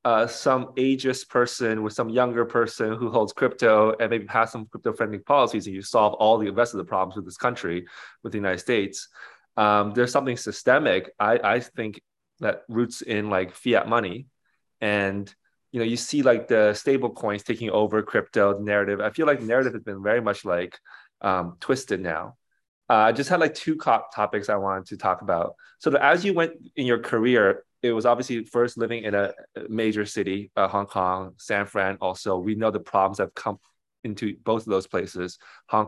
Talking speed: 200 wpm